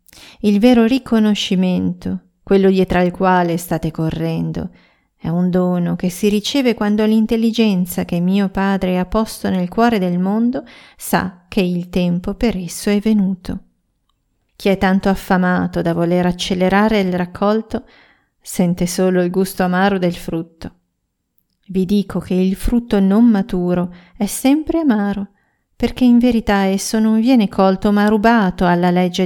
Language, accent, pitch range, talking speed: Italian, native, 185-220 Hz, 145 wpm